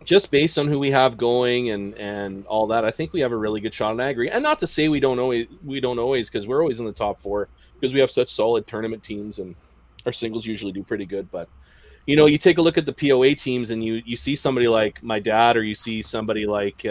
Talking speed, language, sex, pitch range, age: 275 wpm, English, male, 105-130 Hz, 30-49